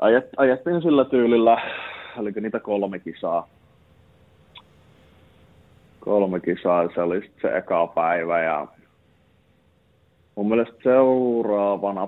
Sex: male